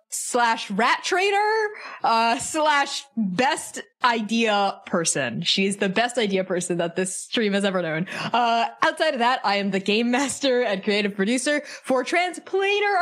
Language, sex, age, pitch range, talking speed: English, female, 20-39, 205-275 Hz, 150 wpm